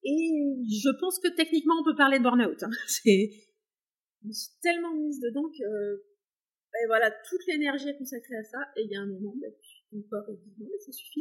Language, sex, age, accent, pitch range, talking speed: French, female, 30-49, French, 215-285 Hz, 200 wpm